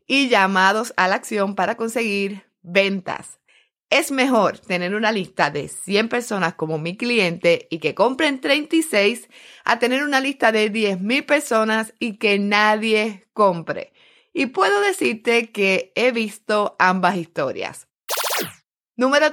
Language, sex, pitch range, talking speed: Spanish, female, 185-240 Hz, 135 wpm